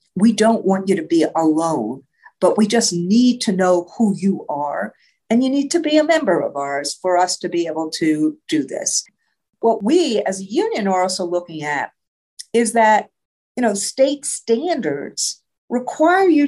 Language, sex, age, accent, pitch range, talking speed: English, female, 50-69, American, 180-250 Hz, 180 wpm